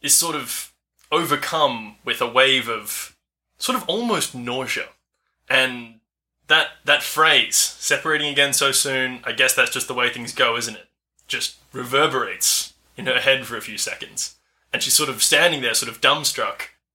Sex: male